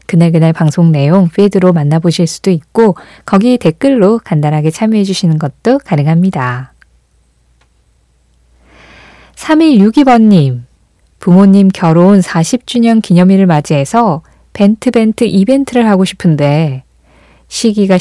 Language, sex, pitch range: Korean, female, 160-225 Hz